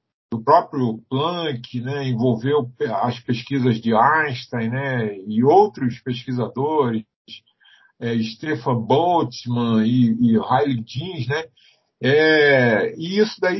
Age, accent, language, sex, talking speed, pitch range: 50-69, Brazilian, Portuguese, male, 105 wpm, 115-160 Hz